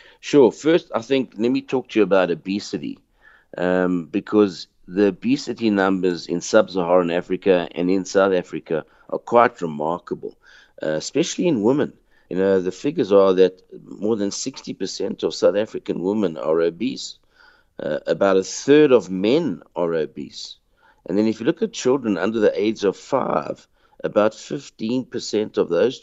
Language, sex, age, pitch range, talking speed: English, male, 50-69, 95-130 Hz, 160 wpm